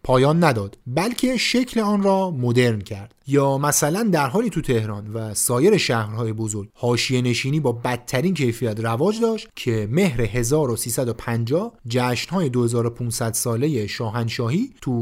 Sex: male